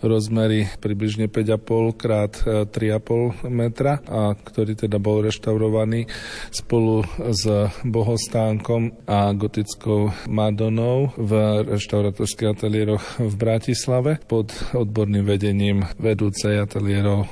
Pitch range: 105-115 Hz